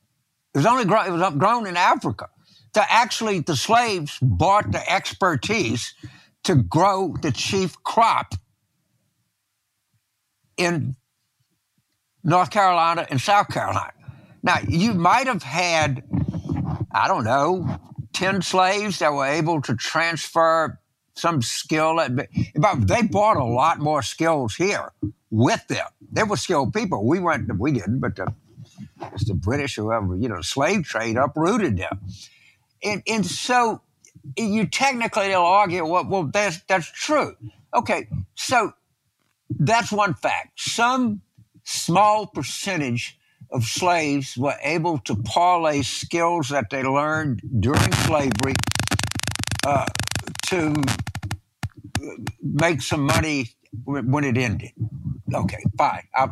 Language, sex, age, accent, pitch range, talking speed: English, male, 60-79, American, 120-180 Hz, 125 wpm